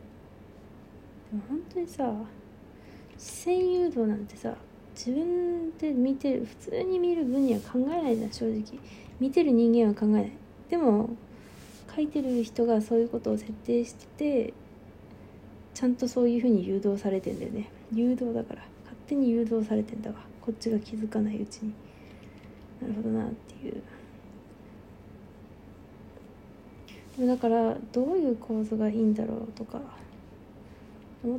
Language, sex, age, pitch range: Japanese, female, 20-39, 200-250 Hz